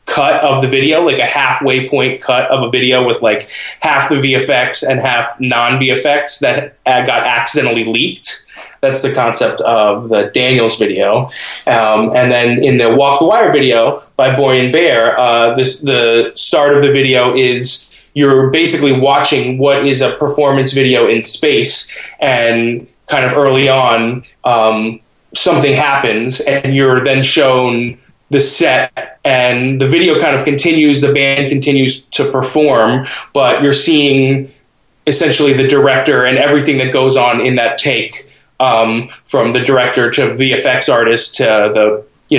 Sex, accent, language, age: male, American, English, 20-39